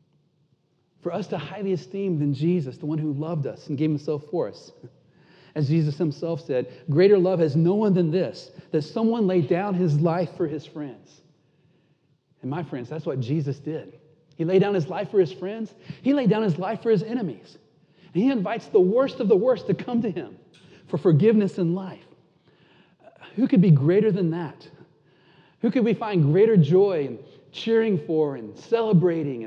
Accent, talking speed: American, 190 wpm